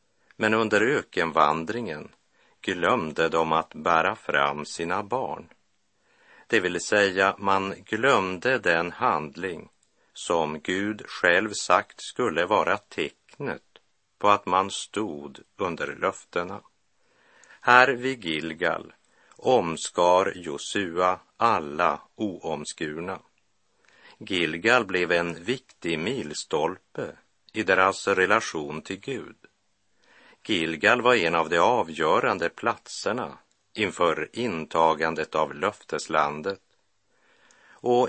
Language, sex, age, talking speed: Swedish, male, 50-69, 95 wpm